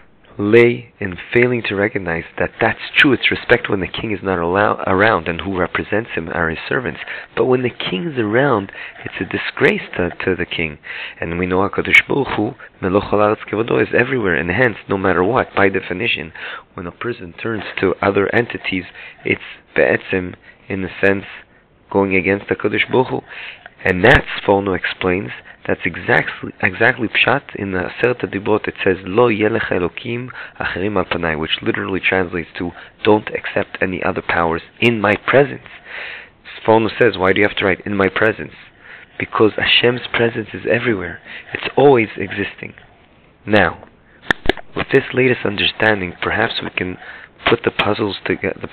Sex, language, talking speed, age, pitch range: male, English, 160 wpm, 30-49, 90-115 Hz